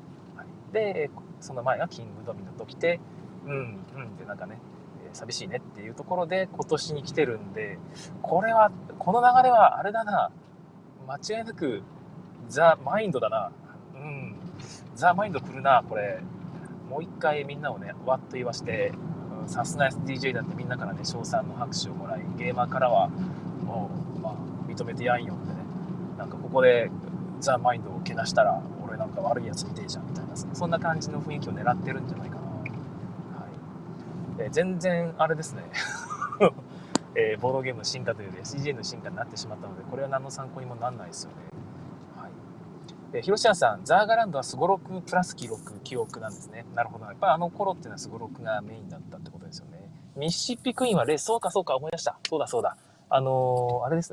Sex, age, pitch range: male, 20-39, 140-180 Hz